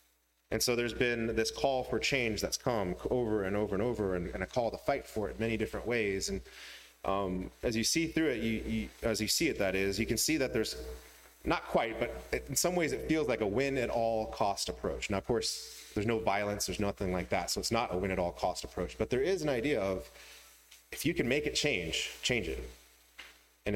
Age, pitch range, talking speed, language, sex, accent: 30-49, 90-120 Hz, 235 wpm, English, male, American